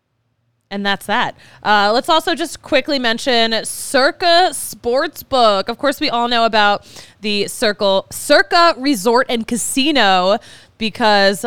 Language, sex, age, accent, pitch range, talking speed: English, female, 20-39, American, 180-245 Hz, 125 wpm